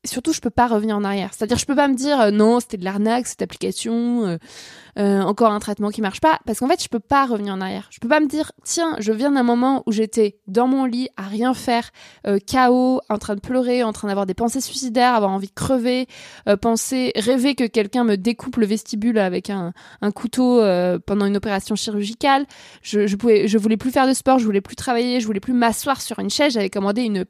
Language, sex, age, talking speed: French, female, 20-39, 245 wpm